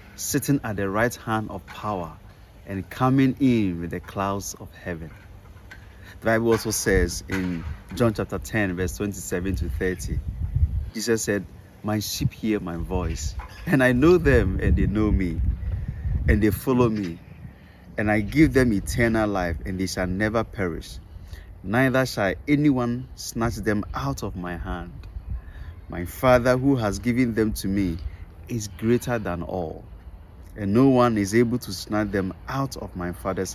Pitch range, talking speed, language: 85-115 Hz, 160 wpm, English